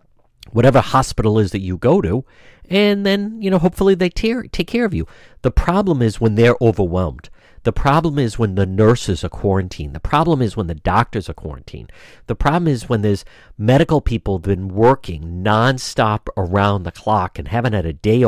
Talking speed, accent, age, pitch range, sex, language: 195 wpm, American, 50-69, 95-135 Hz, male, English